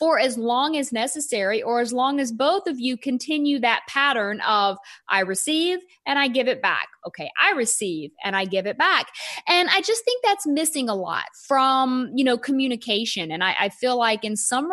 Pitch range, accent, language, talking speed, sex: 210-280 Hz, American, English, 205 wpm, female